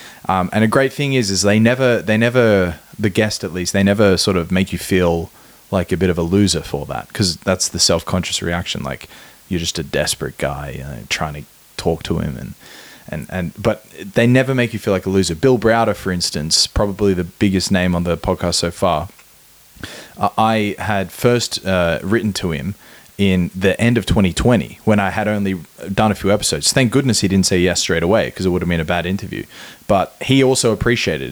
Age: 20-39